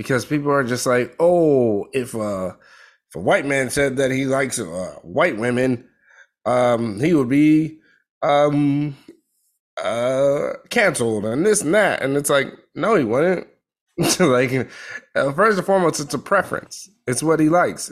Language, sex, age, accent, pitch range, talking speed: English, male, 30-49, American, 110-140 Hz, 155 wpm